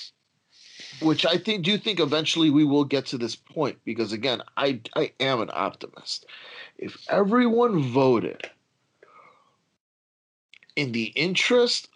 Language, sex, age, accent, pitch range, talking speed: English, male, 40-59, American, 120-170 Hz, 130 wpm